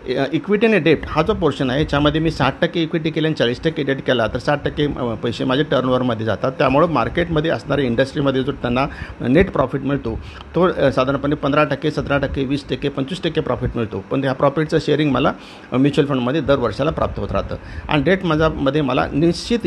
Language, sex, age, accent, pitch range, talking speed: Marathi, male, 50-69, native, 125-155 Hz, 170 wpm